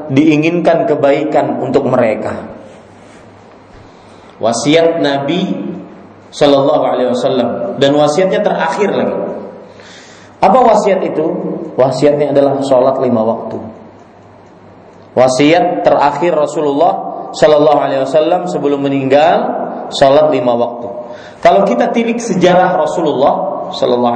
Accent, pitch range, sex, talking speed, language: native, 135-175 Hz, male, 95 wpm, Indonesian